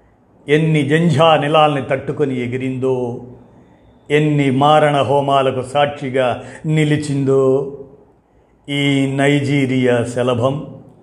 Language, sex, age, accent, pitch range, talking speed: Telugu, male, 50-69, native, 125-140 Hz, 70 wpm